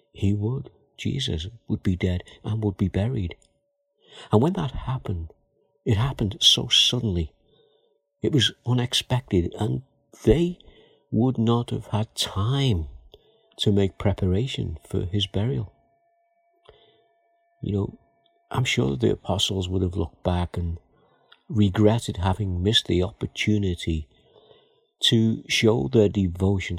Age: 50-69